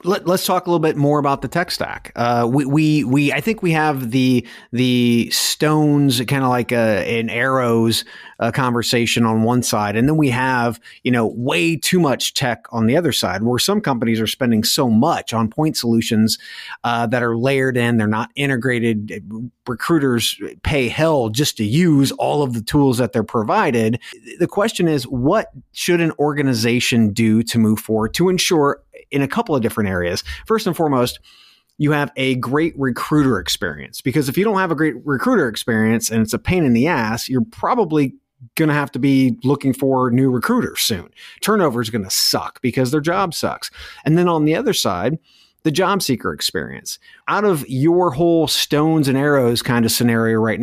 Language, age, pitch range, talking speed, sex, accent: English, 30-49, 115-155 Hz, 195 wpm, male, American